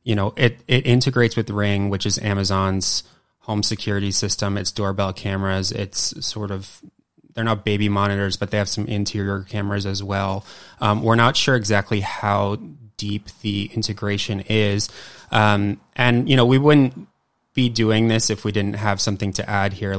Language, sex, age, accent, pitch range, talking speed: English, male, 20-39, American, 100-115 Hz, 175 wpm